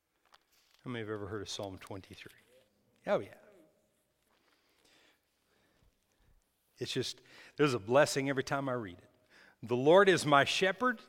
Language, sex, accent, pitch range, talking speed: English, male, American, 110-150 Hz, 135 wpm